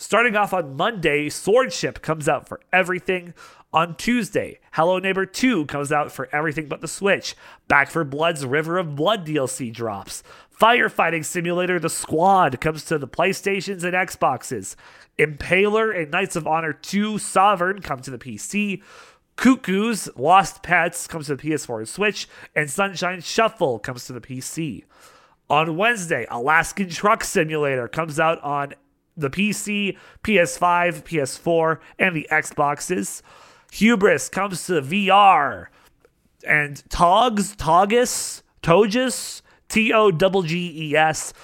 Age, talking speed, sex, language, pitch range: 30-49, 130 wpm, male, English, 150-195 Hz